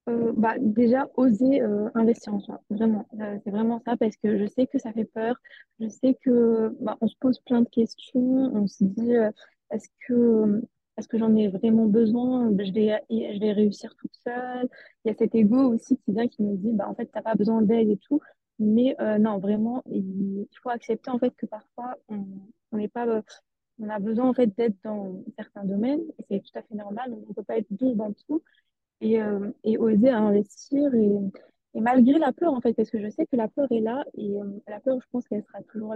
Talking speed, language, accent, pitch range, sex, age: 230 wpm, French, French, 210-250 Hz, female, 20-39